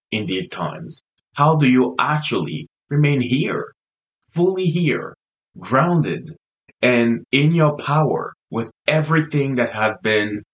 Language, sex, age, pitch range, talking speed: English, male, 20-39, 110-140 Hz, 120 wpm